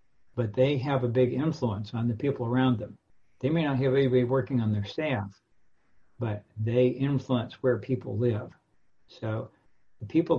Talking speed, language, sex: 170 wpm, English, male